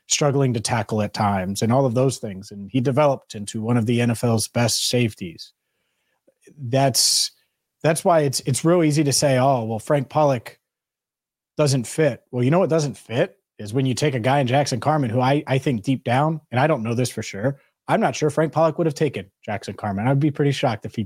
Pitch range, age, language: 115-150 Hz, 30-49, English